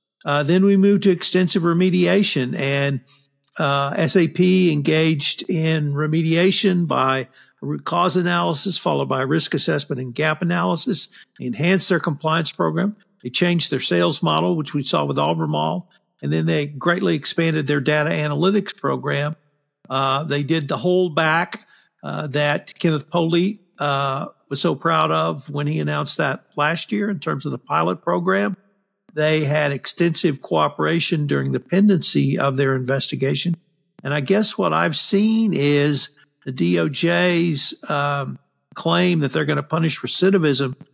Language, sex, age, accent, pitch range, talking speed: English, male, 50-69, American, 140-175 Hz, 150 wpm